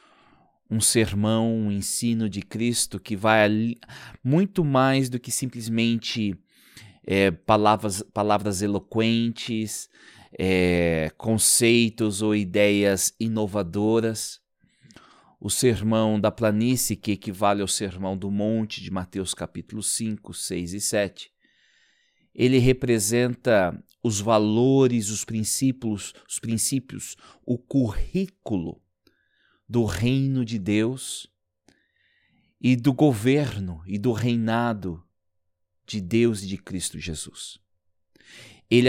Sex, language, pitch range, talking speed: male, Portuguese, 100-120 Hz, 95 wpm